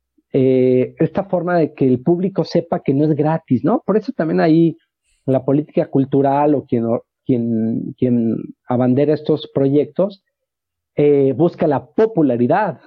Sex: male